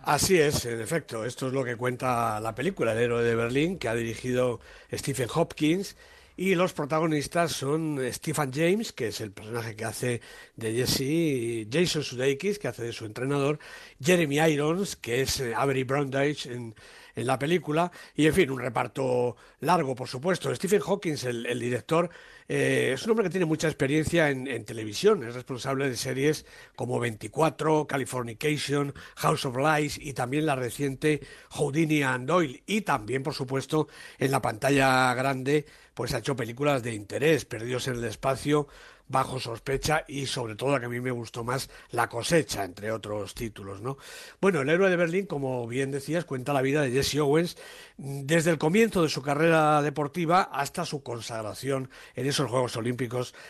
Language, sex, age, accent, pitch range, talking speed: Spanish, male, 60-79, Spanish, 125-155 Hz, 175 wpm